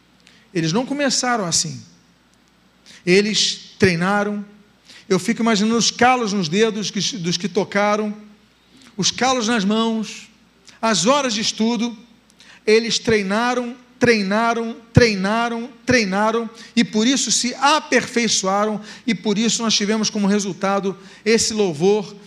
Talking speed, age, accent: 115 wpm, 40-59, Brazilian